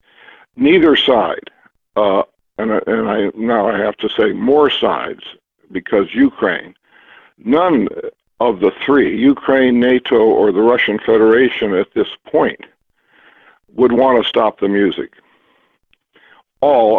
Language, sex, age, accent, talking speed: English, male, 60-79, American, 125 wpm